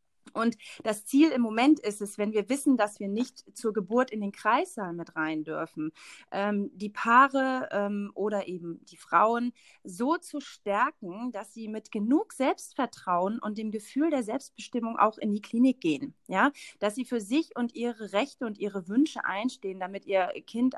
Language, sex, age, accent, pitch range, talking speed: German, female, 30-49, German, 200-245 Hz, 180 wpm